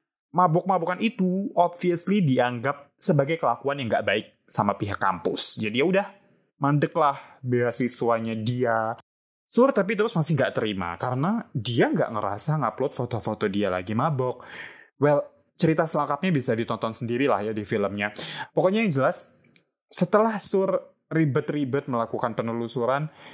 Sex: male